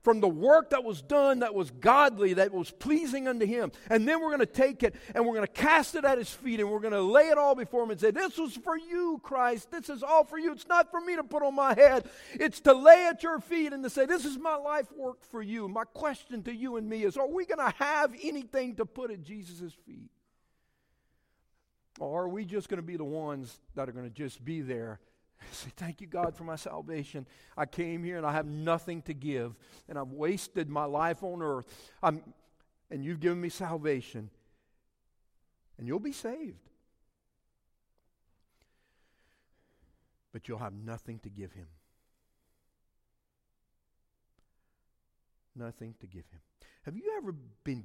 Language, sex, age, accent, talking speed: English, male, 50-69, American, 200 wpm